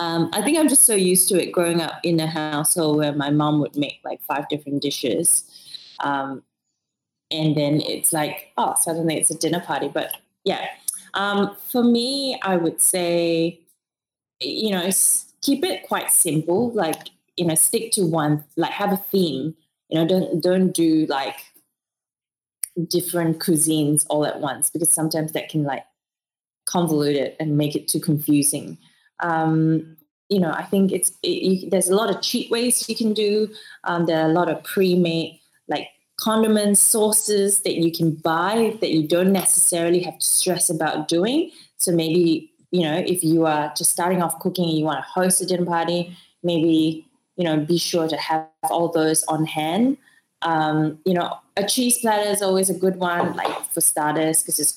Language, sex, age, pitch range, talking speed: English, female, 20-39, 155-190 Hz, 185 wpm